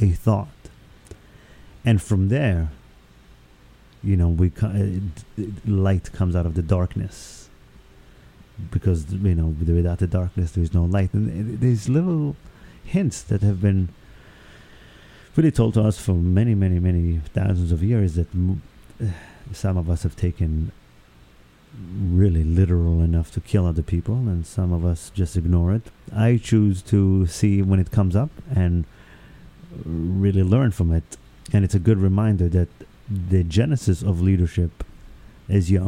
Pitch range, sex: 85-100 Hz, male